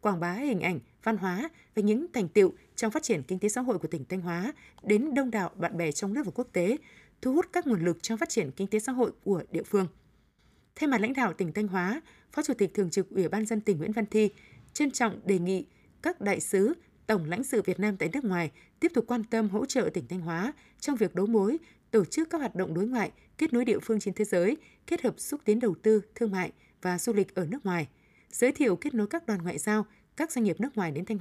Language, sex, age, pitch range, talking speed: Vietnamese, female, 20-39, 185-240 Hz, 260 wpm